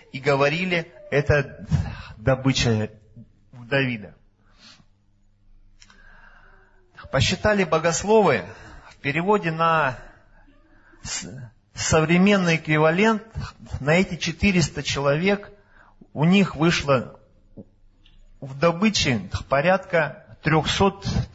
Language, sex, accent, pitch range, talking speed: Russian, male, native, 105-175 Hz, 65 wpm